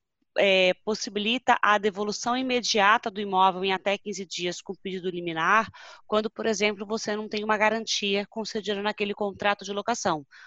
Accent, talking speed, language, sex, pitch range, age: Brazilian, 155 wpm, Portuguese, female, 190-225 Hz, 20-39